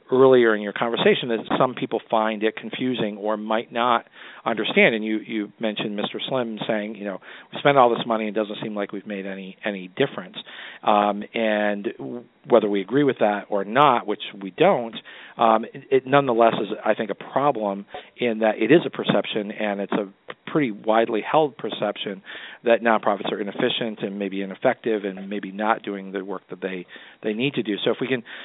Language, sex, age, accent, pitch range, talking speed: English, male, 40-59, American, 100-120 Hz, 200 wpm